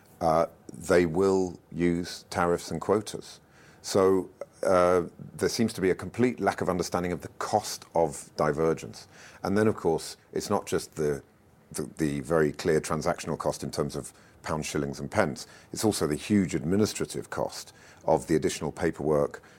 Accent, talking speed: British, 165 wpm